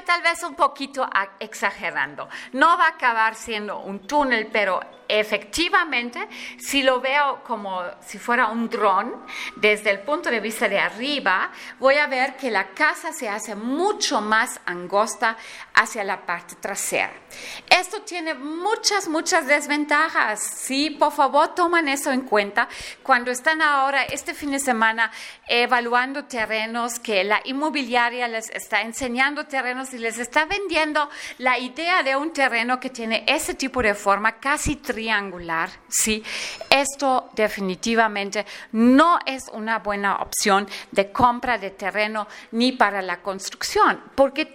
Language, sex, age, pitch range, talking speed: English, female, 40-59, 220-300 Hz, 145 wpm